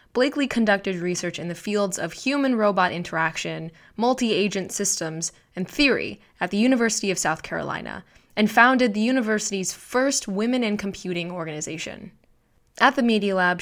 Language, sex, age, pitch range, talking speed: English, female, 20-39, 180-230 Hz, 140 wpm